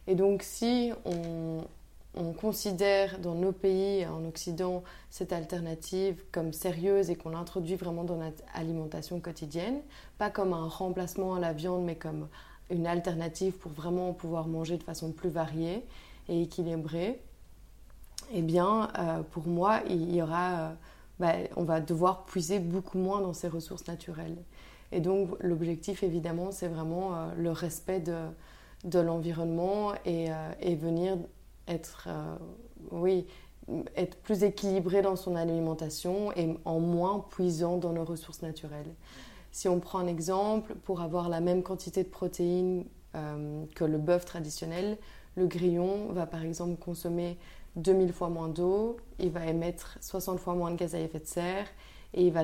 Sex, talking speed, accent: female, 155 wpm, French